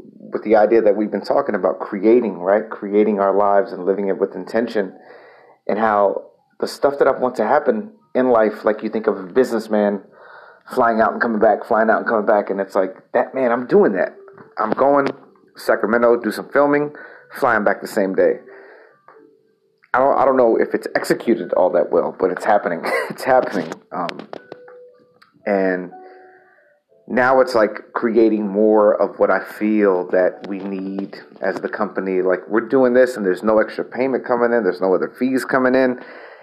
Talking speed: 185 wpm